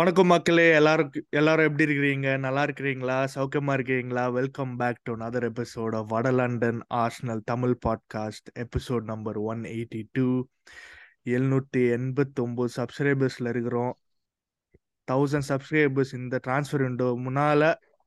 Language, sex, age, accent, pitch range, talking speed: Tamil, male, 20-39, native, 120-145 Hz, 45 wpm